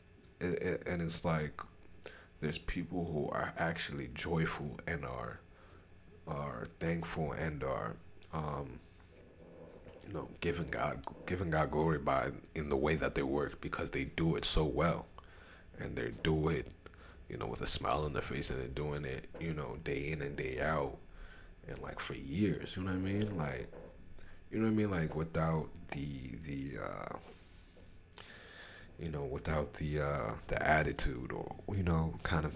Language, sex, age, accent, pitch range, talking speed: English, male, 30-49, American, 80-90 Hz, 170 wpm